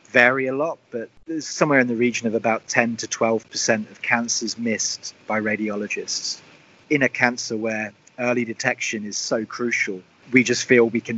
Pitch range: 110-120 Hz